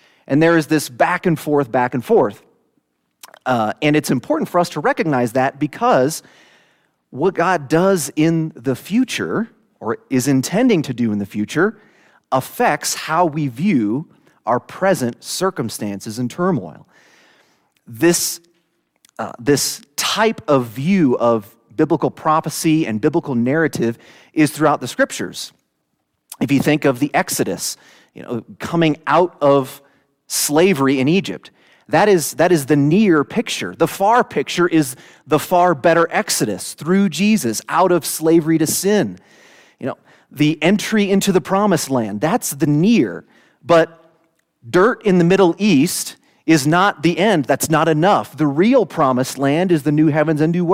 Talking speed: 150 wpm